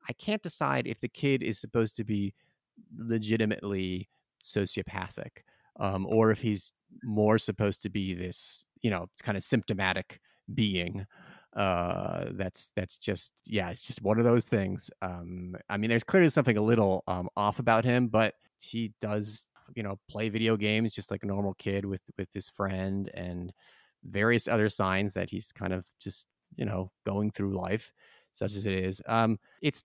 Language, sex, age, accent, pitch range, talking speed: English, male, 30-49, American, 100-125 Hz, 175 wpm